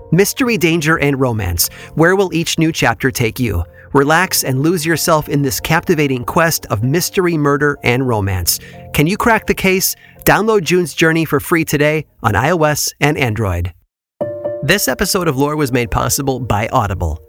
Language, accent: English, American